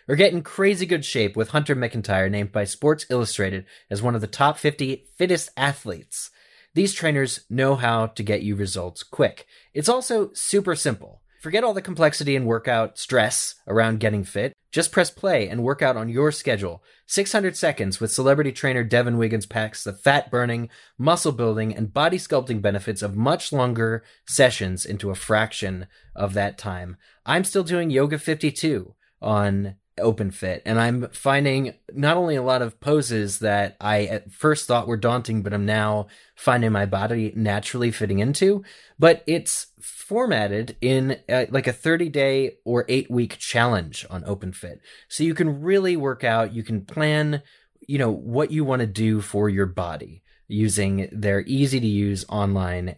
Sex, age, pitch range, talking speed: male, 20-39, 105-140 Hz, 170 wpm